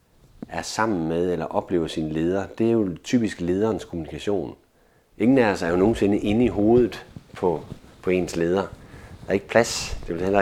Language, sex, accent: Danish, male, native